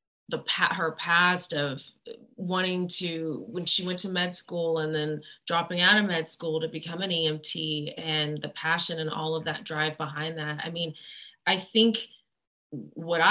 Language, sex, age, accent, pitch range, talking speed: English, female, 30-49, American, 155-180 Hz, 170 wpm